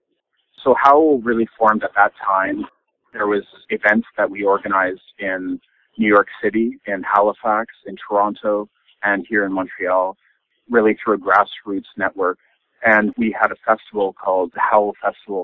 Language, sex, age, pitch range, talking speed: English, male, 40-59, 100-140 Hz, 150 wpm